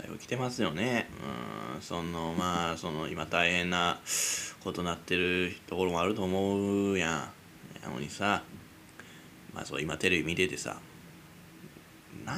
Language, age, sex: Japanese, 20-39, male